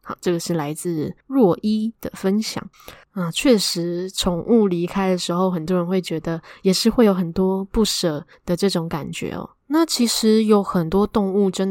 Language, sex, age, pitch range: Chinese, female, 10-29, 175-215 Hz